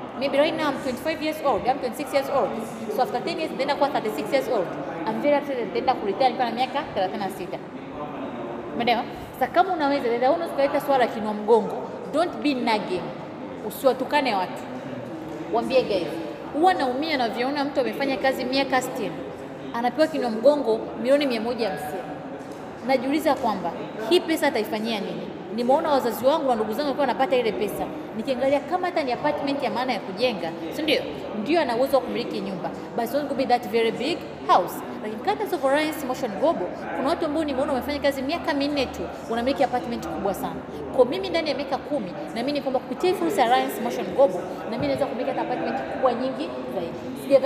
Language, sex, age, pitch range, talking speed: Swahili, female, 30-49, 240-285 Hz, 140 wpm